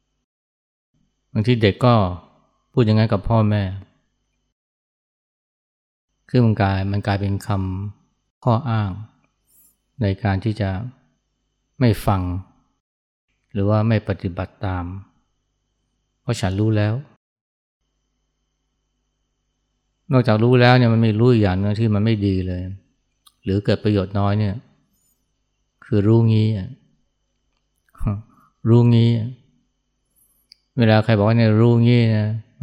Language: Thai